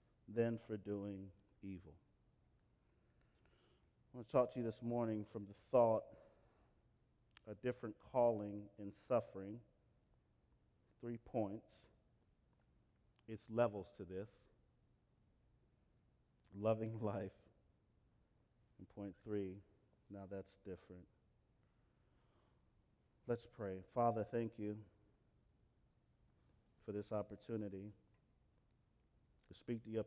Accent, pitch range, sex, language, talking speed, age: American, 105-120 Hz, male, English, 90 wpm, 40-59